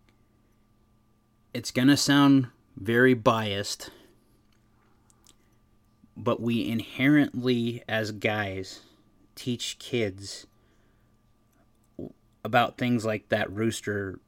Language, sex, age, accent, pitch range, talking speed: English, male, 30-49, American, 105-115 Hz, 75 wpm